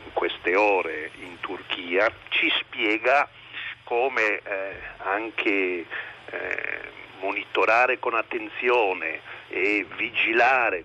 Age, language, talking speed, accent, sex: 50-69, Italian, 90 wpm, native, male